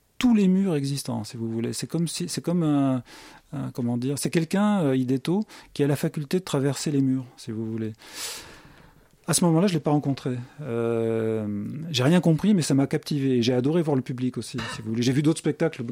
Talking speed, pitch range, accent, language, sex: 225 wpm, 125-155 Hz, French, French, male